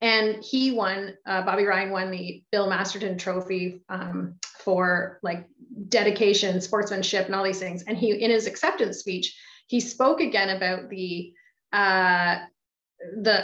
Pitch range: 190-245 Hz